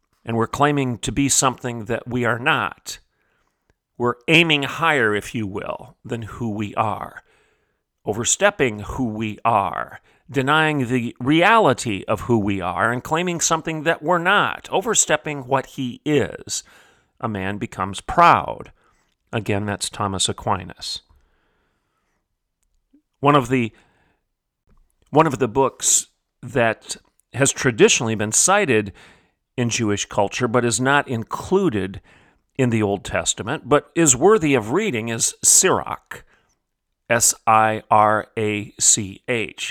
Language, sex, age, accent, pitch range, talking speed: English, male, 40-59, American, 105-140 Hz, 120 wpm